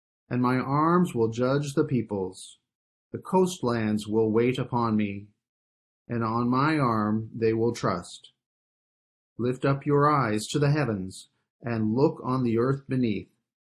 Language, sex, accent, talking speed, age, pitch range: English, male, American, 145 wpm, 40-59, 105-135 Hz